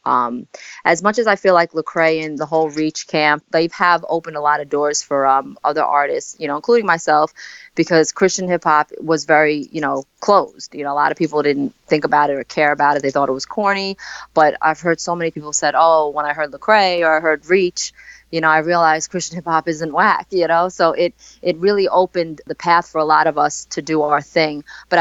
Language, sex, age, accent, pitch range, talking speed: English, female, 20-39, American, 150-175 Hz, 240 wpm